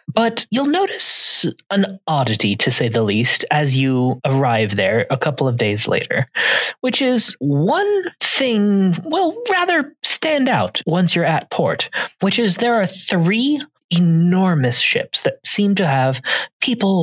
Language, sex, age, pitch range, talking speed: English, male, 30-49, 145-235 Hz, 150 wpm